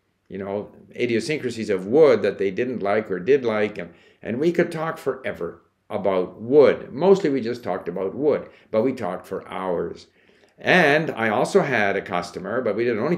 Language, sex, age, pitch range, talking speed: English, male, 50-69, 95-140 Hz, 185 wpm